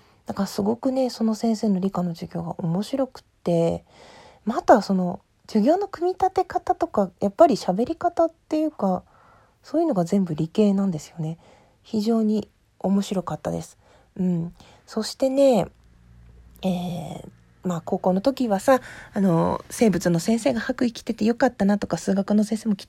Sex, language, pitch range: female, Japanese, 175-235 Hz